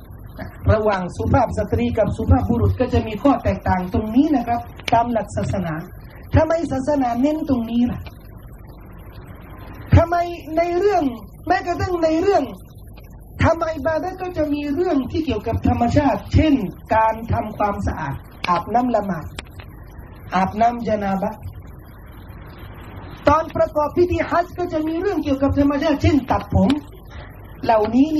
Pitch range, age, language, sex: 225-315 Hz, 30-49, Thai, male